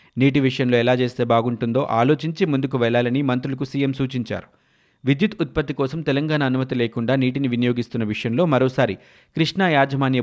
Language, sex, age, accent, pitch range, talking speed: Telugu, male, 30-49, native, 120-150 Hz, 135 wpm